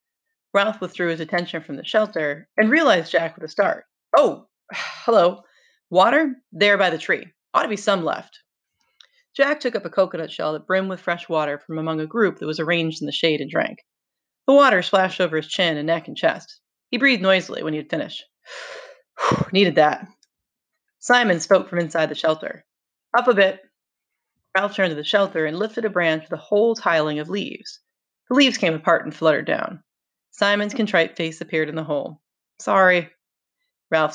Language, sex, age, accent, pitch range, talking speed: English, female, 30-49, American, 165-255 Hz, 190 wpm